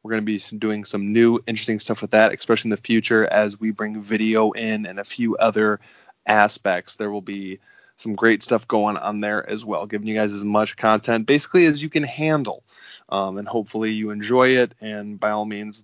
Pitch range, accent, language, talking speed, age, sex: 105-125 Hz, American, English, 215 wpm, 20-39, male